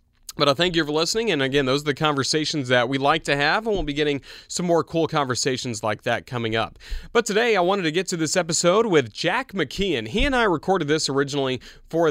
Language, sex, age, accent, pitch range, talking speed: English, male, 30-49, American, 110-145 Hz, 240 wpm